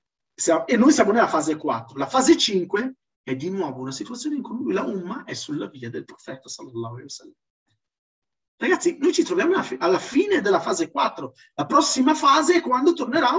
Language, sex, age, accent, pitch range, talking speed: Italian, male, 40-59, native, 210-335 Hz, 175 wpm